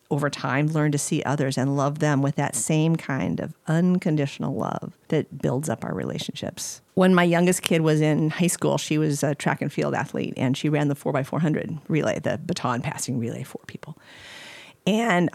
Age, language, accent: 50-69, English, American